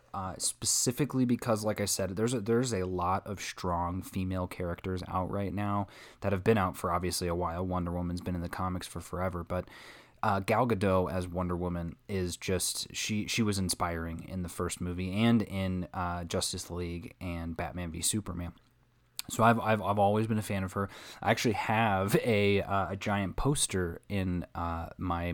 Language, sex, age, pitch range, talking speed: English, male, 20-39, 90-105 Hz, 190 wpm